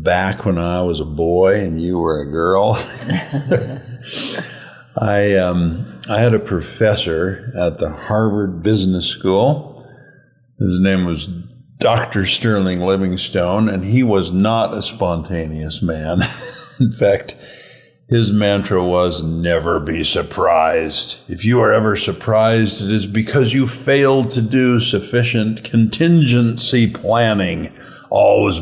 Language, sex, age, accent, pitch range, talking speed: English, male, 50-69, American, 85-115 Hz, 125 wpm